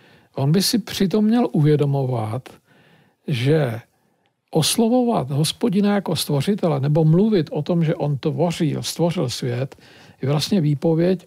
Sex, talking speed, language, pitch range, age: male, 120 wpm, Czech, 135-180 Hz, 50-69